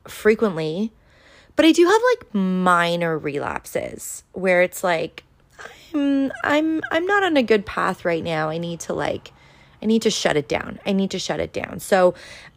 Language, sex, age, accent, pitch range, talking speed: English, female, 20-39, American, 165-200 Hz, 185 wpm